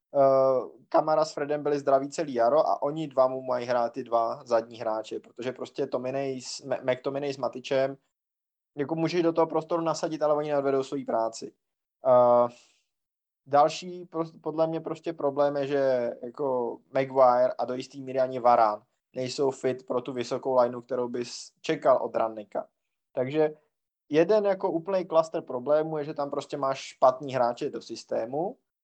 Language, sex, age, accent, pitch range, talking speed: Czech, male, 20-39, native, 130-165 Hz, 170 wpm